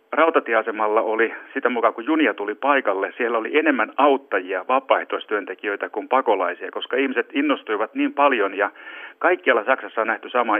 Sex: male